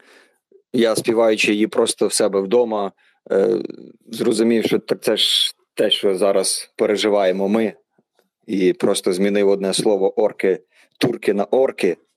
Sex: male